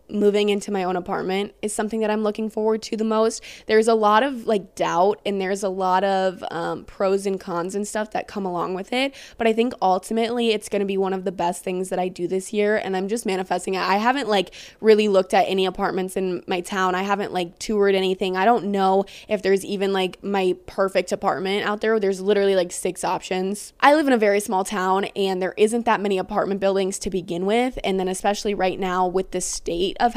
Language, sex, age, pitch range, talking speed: English, female, 20-39, 190-220 Hz, 235 wpm